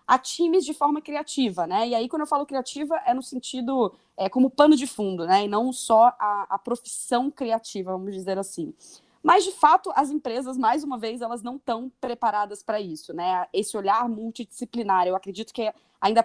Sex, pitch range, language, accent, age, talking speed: female, 215-265 Hz, Portuguese, Brazilian, 20-39, 195 wpm